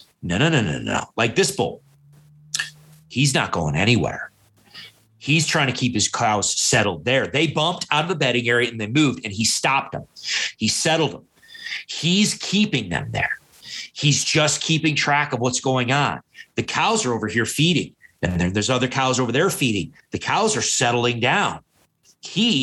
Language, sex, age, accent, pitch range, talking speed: English, male, 30-49, American, 130-155 Hz, 185 wpm